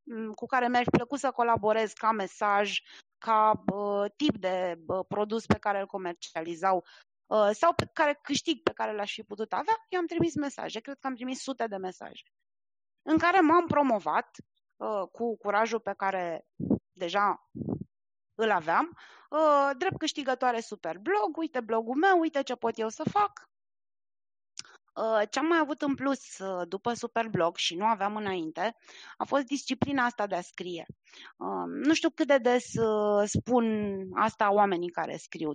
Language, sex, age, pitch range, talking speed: Romanian, female, 20-39, 195-270 Hz, 155 wpm